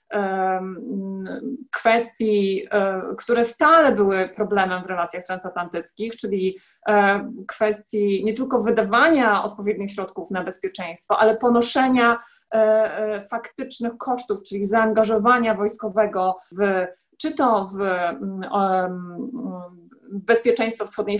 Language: Polish